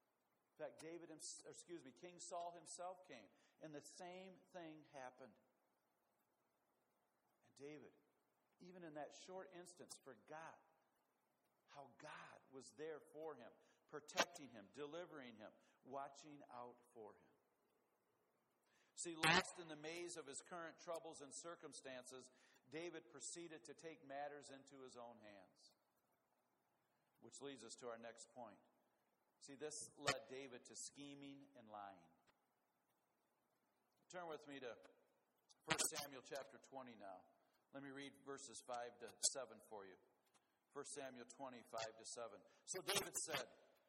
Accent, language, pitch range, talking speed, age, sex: American, English, 135-175 Hz, 130 wpm, 50-69, male